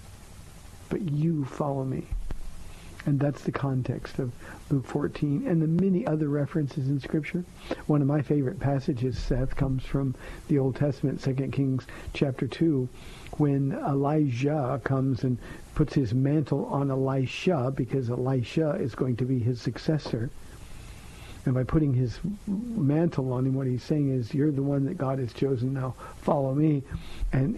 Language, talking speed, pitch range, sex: English, 155 wpm, 130-165 Hz, male